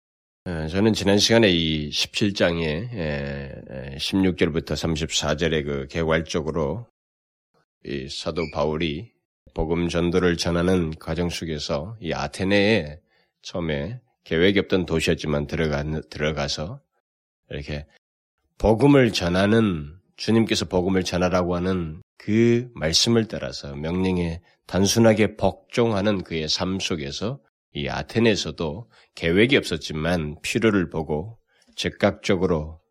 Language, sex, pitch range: Korean, male, 80-100 Hz